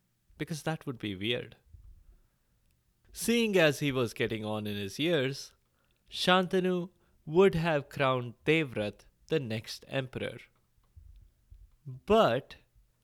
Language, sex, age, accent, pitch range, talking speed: English, male, 20-39, Indian, 110-165 Hz, 105 wpm